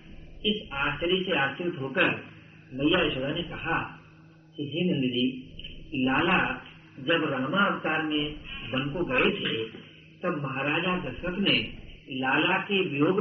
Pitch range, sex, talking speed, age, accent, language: 140-170 Hz, male, 125 wpm, 50-69, native, Hindi